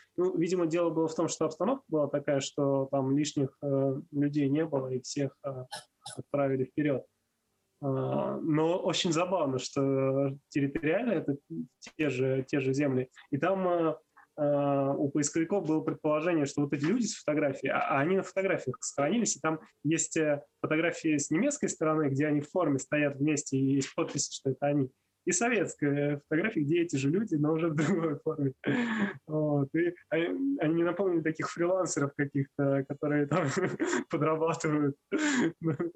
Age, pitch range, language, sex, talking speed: 20-39, 140-165 Hz, Russian, male, 160 wpm